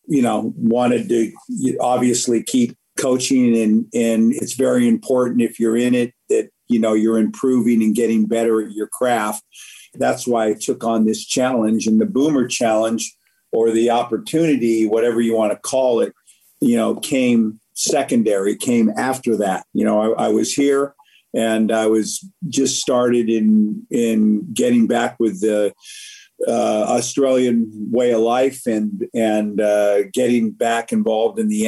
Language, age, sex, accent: English, 50-69, male, American